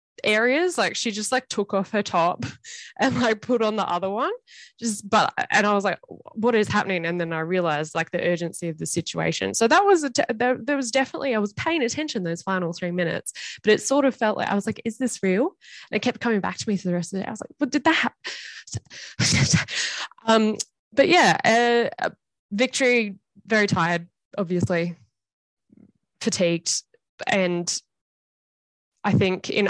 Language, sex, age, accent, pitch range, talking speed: English, female, 10-29, Australian, 165-220 Hz, 190 wpm